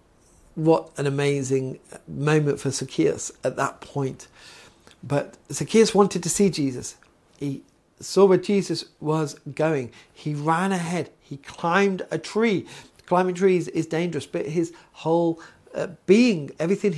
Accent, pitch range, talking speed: British, 135-185 Hz, 135 wpm